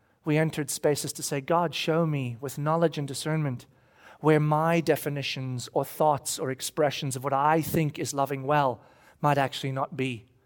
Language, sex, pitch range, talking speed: English, male, 135-160 Hz, 170 wpm